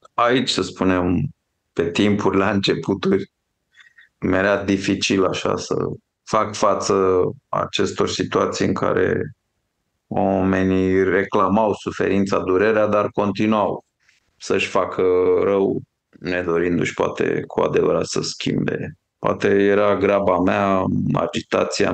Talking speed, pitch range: 100 wpm, 95-105 Hz